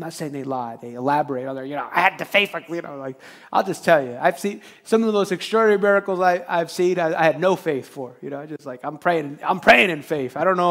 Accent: American